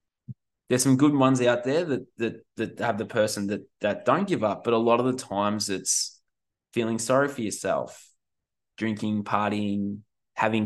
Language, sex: English, male